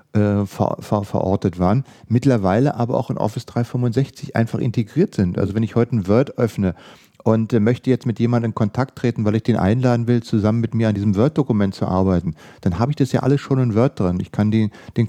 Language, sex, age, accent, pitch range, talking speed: German, male, 40-59, German, 105-135 Hz, 220 wpm